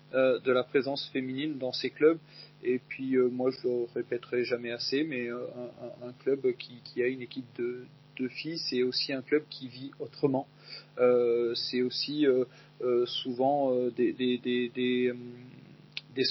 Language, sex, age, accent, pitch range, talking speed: French, male, 30-49, French, 125-150 Hz, 180 wpm